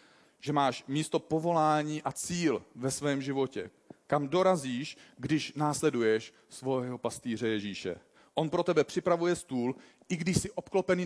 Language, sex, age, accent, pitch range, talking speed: Czech, male, 40-59, native, 125-160 Hz, 135 wpm